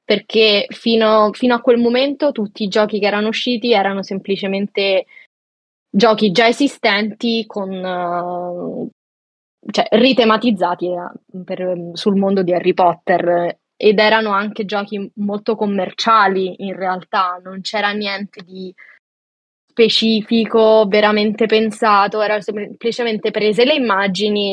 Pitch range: 190-230 Hz